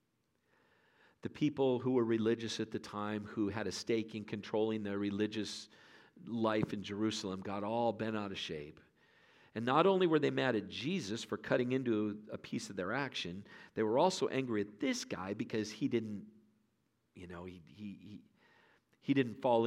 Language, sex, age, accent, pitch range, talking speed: English, male, 50-69, American, 105-130 Hz, 180 wpm